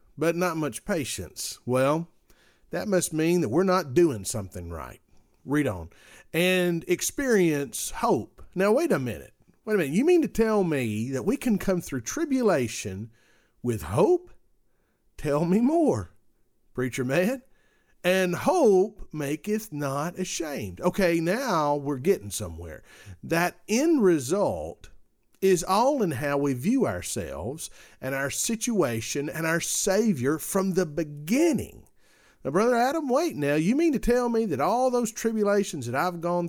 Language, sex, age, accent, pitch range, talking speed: English, male, 50-69, American, 135-205 Hz, 150 wpm